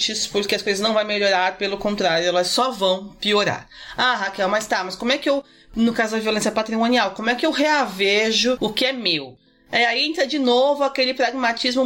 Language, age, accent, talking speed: Portuguese, 30-49, Brazilian, 205 wpm